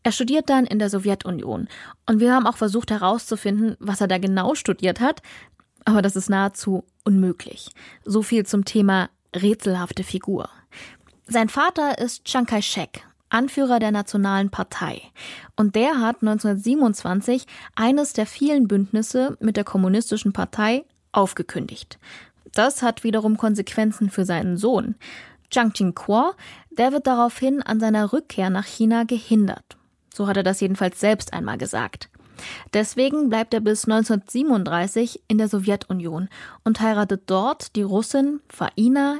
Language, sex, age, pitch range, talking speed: German, female, 20-39, 200-250 Hz, 140 wpm